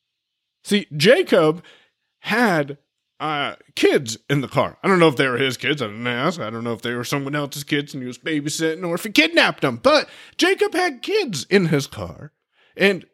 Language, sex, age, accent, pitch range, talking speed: English, male, 30-49, American, 145-225 Hz, 205 wpm